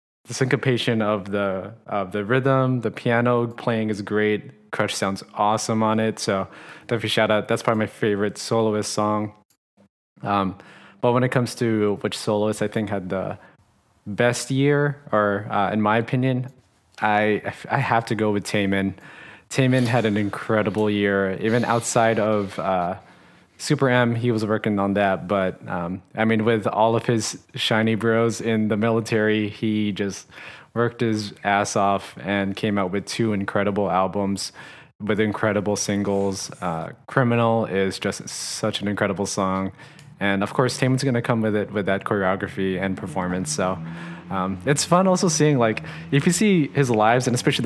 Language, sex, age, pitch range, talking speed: English, male, 20-39, 100-120 Hz, 170 wpm